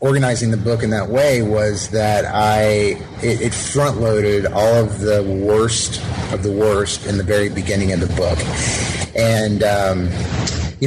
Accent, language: American, English